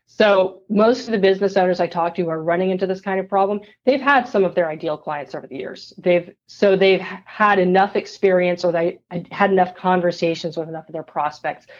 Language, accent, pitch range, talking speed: English, American, 165-190 Hz, 220 wpm